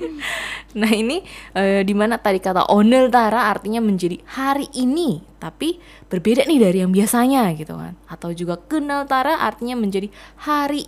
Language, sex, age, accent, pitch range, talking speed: Indonesian, female, 20-39, native, 175-240 Hz, 150 wpm